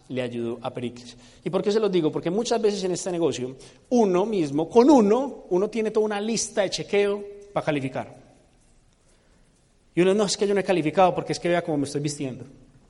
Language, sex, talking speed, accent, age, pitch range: Spanish, male, 215 wpm, Colombian, 30-49, 155-205 Hz